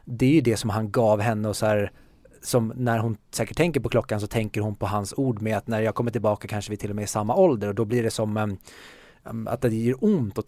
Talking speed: 275 wpm